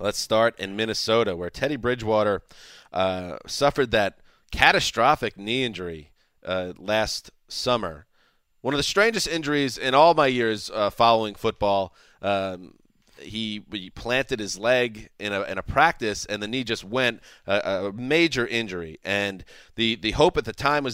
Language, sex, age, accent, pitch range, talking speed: English, male, 30-49, American, 100-125 Hz, 155 wpm